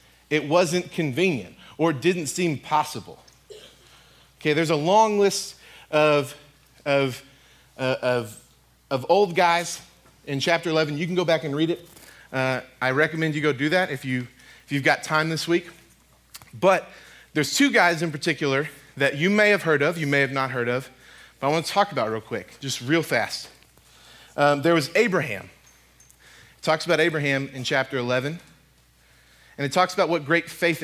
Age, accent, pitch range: 30-49, American, 120-170 Hz